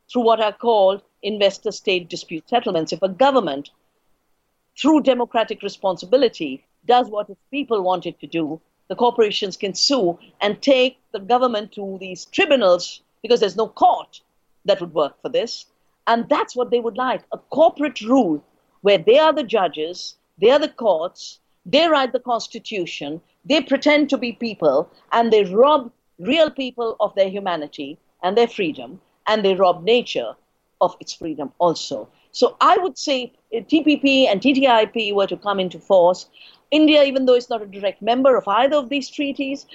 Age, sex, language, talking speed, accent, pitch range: 50-69, female, English, 170 wpm, Indian, 190-275 Hz